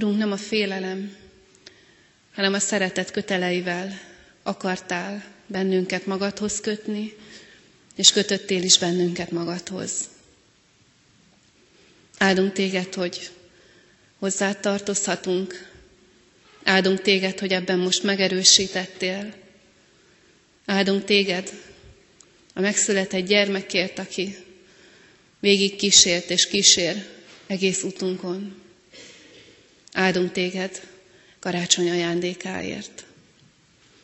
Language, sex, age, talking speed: Hungarian, female, 30-49, 80 wpm